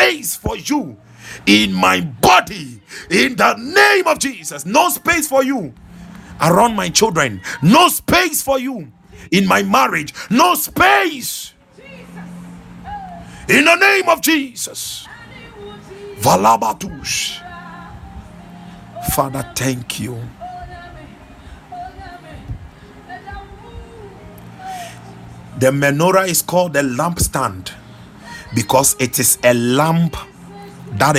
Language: English